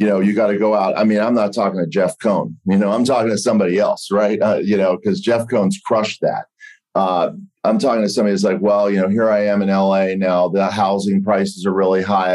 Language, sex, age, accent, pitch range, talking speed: English, male, 40-59, American, 95-105 Hz, 255 wpm